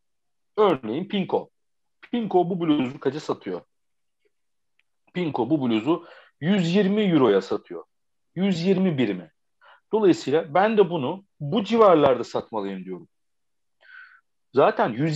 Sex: male